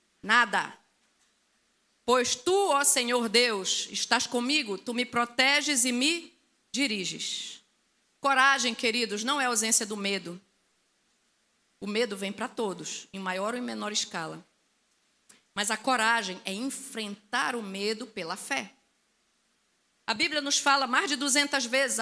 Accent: Brazilian